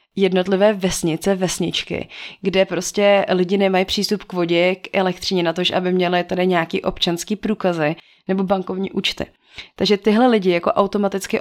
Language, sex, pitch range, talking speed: Czech, female, 185-210 Hz, 145 wpm